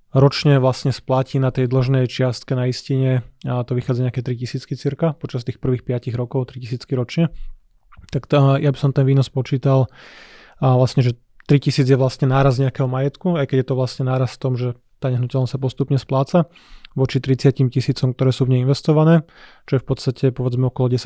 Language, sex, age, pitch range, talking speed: Slovak, male, 20-39, 125-135 Hz, 190 wpm